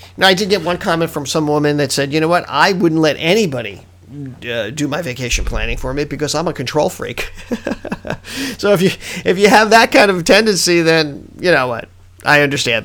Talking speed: 205 wpm